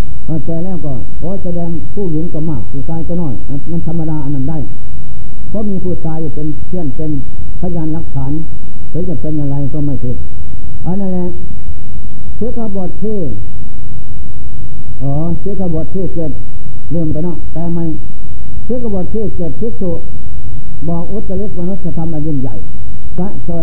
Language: Thai